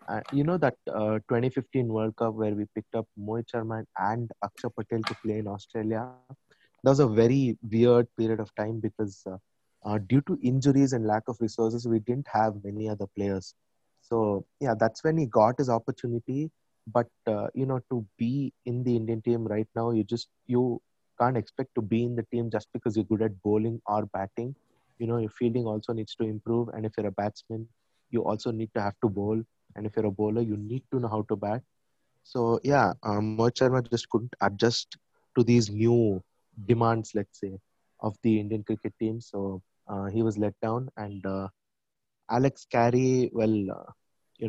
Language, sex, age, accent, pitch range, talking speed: English, male, 20-39, Indian, 105-120 Hz, 195 wpm